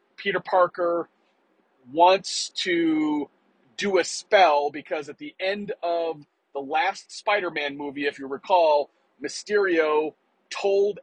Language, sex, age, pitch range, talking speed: English, male, 40-59, 150-190 Hz, 115 wpm